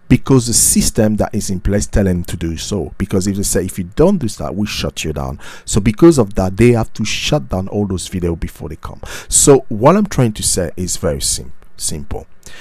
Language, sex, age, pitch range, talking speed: English, male, 50-69, 90-115 Hz, 245 wpm